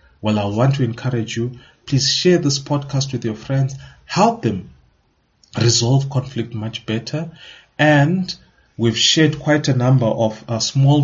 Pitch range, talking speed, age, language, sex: 110-135 Hz, 150 wpm, 30-49, English, male